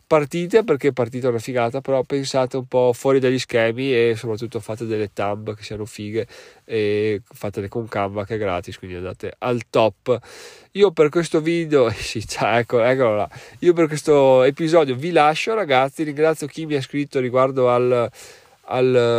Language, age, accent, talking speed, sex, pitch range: Italian, 20-39, native, 170 wpm, male, 115-150 Hz